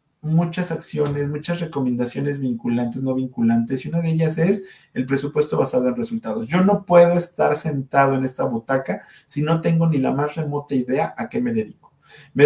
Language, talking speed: Spanish, 185 wpm